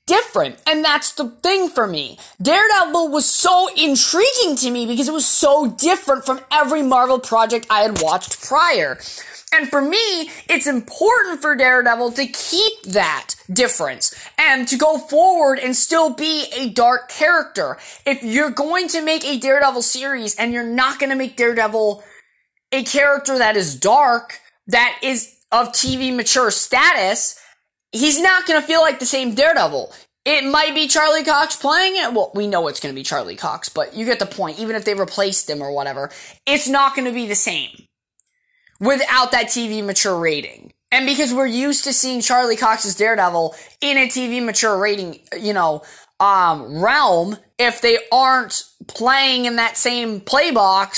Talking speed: 175 wpm